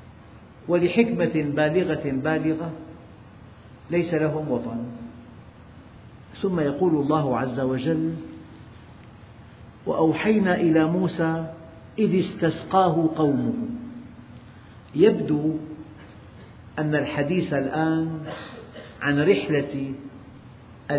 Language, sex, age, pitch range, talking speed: Arabic, male, 50-69, 120-165 Hz, 65 wpm